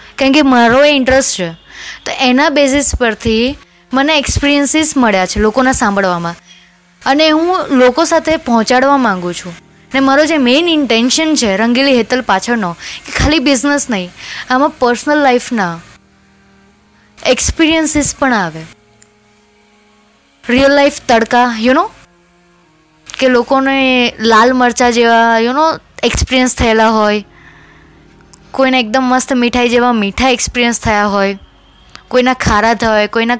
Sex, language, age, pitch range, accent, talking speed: female, Gujarati, 20-39, 205-265 Hz, native, 130 wpm